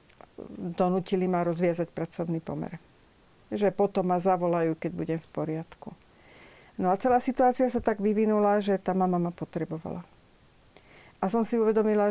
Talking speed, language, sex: 145 wpm, Slovak, female